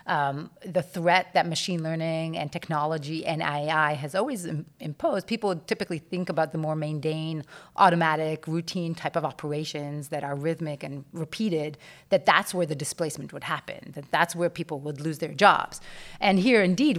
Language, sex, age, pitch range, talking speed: English, female, 30-49, 155-195 Hz, 170 wpm